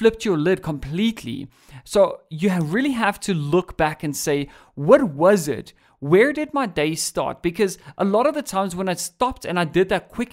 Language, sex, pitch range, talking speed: English, male, 155-195 Hz, 205 wpm